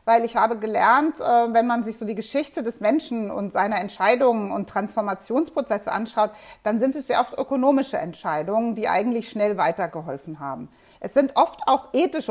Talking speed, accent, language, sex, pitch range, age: 170 wpm, German, German, female, 220-270 Hz, 30-49